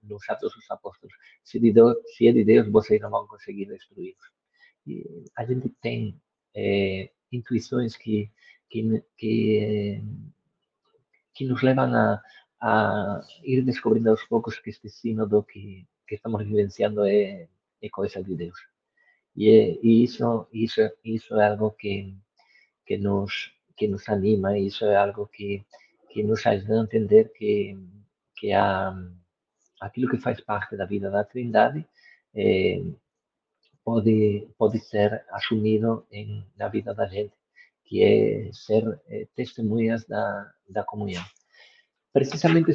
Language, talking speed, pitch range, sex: Portuguese, 140 wpm, 105-130 Hz, male